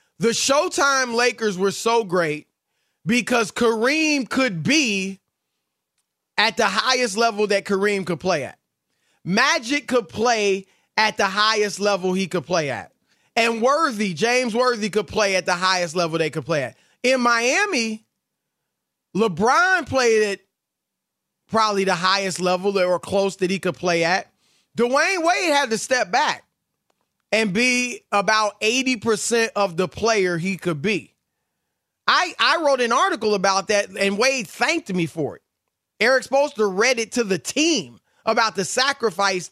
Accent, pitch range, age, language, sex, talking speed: American, 195-250 Hz, 30-49, English, male, 150 wpm